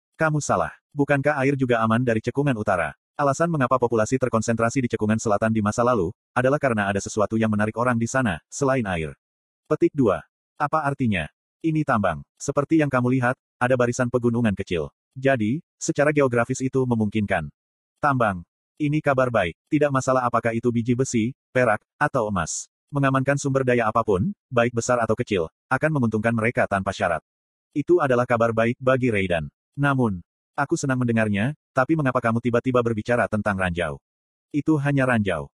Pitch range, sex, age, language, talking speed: 110-135 Hz, male, 30-49, Indonesian, 160 wpm